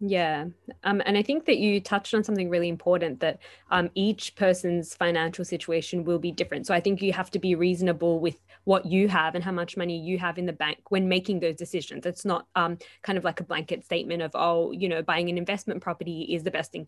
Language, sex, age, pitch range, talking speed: English, female, 20-39, 170-195 Hz, 240 wpm